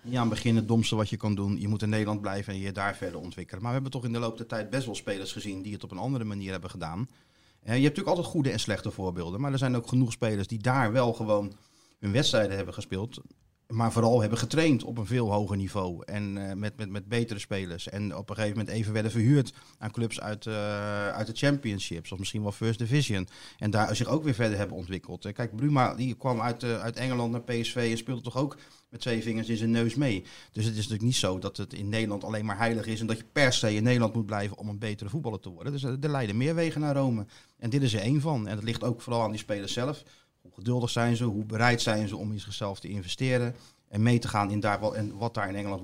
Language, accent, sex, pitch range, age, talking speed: Dutch, Dutch, male, 105-125 Hz, 40-59, 260 wpm